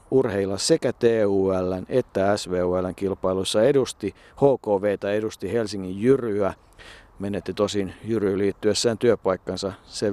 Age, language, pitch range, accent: 50-69, Finnish, 95-115 Hz, native